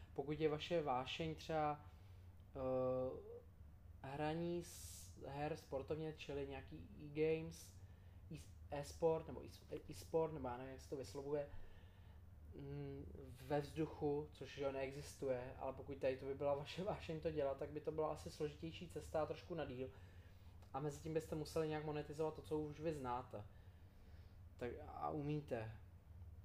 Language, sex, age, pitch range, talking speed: Czech, male, 20-39, 95-155 Hz, 150 wpm